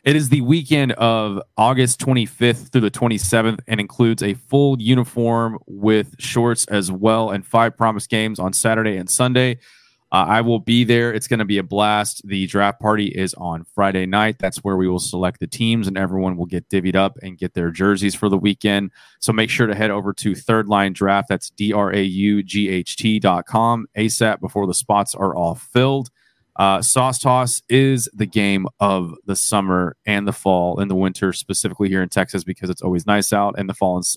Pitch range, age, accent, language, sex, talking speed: 100-115 Hz, 30-49, American, English, male, 200 wpm